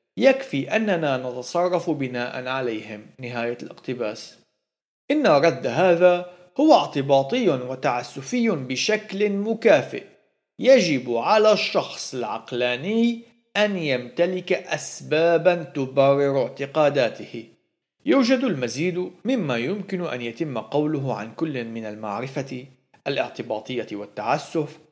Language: Arabic